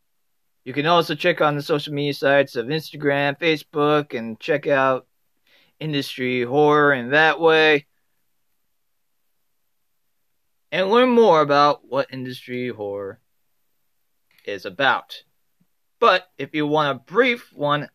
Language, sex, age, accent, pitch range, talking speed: English, male, 30-49, American, 130-155 Hz, 120 wpm